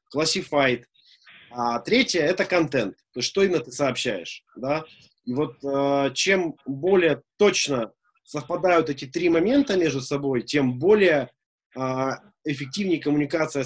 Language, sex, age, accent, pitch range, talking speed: Russian, male, 30-49, native, 140-180 Hz, 125 wpm